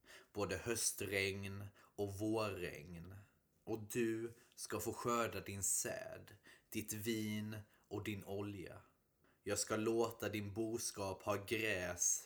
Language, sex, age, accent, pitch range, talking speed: Swedish, male, 20-39, native, 95-110 Hz, 115 wpm